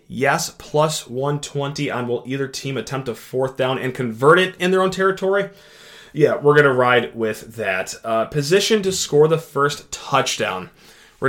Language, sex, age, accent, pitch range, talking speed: English, male, 30-49, American, 125-155 Hz, 175 wpm